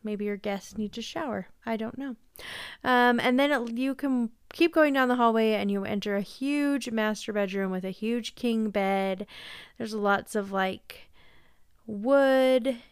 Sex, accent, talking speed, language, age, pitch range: female, American, 165 wpm, English, 30-49, 200-245 Hz